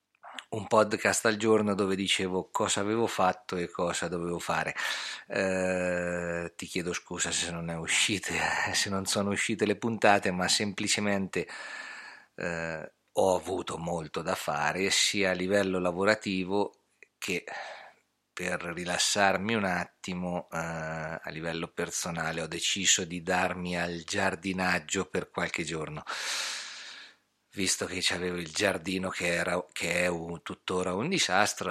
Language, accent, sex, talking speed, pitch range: Italian, native, male, 125 wpm, 85-95 Hz